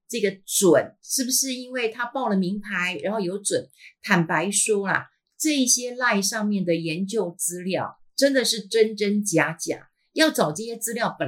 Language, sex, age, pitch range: Chinese, female, 50-69, 195-250 Hz